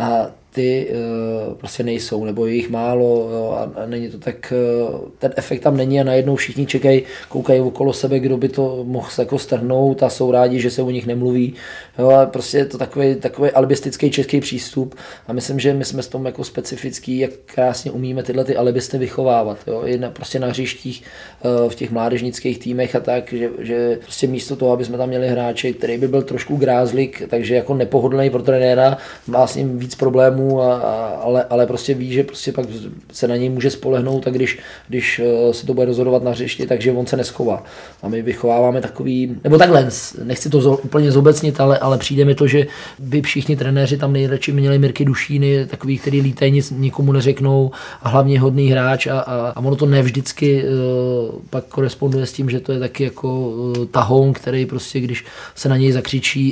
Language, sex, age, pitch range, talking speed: Czech, male, 20-39, 125-135 Hz, 195 wpm